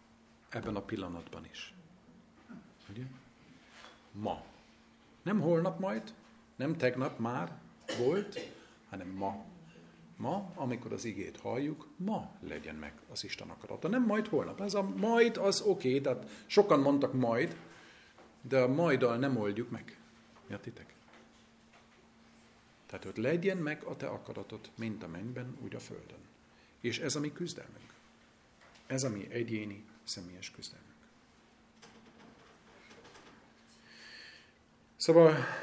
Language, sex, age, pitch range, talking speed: Hungarian, male, 50-69, 115-150 Hz, 120 wpm